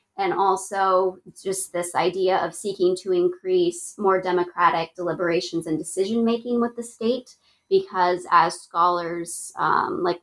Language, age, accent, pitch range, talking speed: English, 20-39, American, 175-235 Hz, 130 wpm